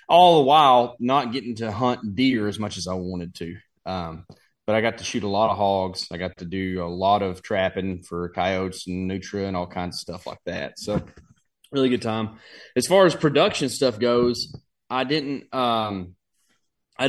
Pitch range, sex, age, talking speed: 100-125 Hz, male, 20-39, 200 wpm